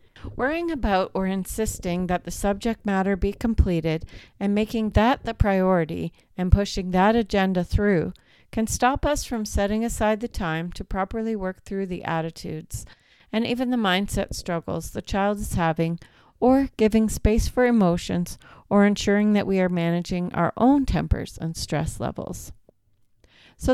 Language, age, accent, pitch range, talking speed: English, 40-59, American, 175-225 Hz, 155 wpm